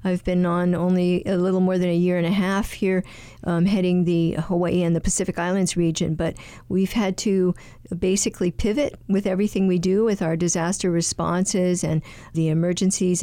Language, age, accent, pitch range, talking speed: English, 50-69, American, 170-190 Hz, 180 wpm